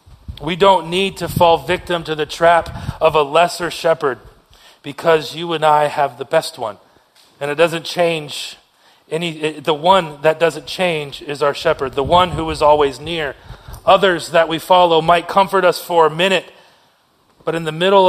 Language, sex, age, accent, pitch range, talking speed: English, male, 30-49, American, 155-185 Hz, 180 wpm